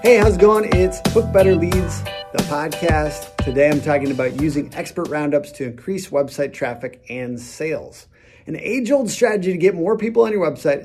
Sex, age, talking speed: male, 30-49, 185 wpm